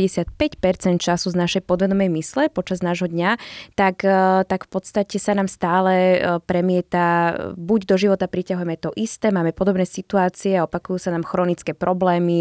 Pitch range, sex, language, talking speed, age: 170-195 Hz, female, Slovak, 150 wpm, 20-39